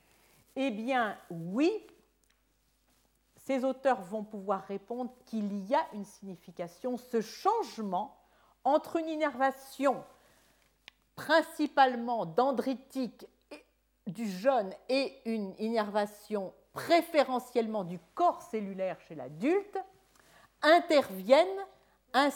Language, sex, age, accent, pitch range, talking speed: French, female, 50-69, French, 190-300 Hz, 90 wpm